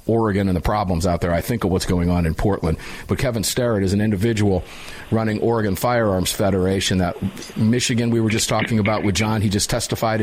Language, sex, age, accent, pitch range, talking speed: English, male, 50-69, American, 110-145 Hz, 210 wpm